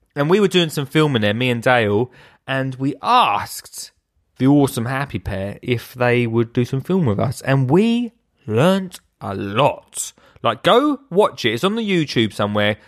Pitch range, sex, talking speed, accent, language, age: 120-175 Hz, male, 180 wpm, British, English, 20-39